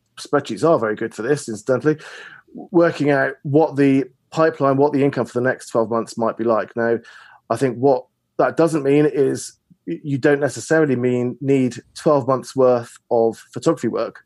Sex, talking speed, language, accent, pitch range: male, 185 wpm, English, British, 115-140 Hz